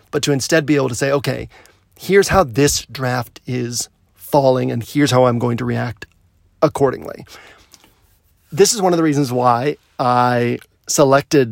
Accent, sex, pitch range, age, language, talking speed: American, male, 120-145 Hz, 40-59, English, 160 wpm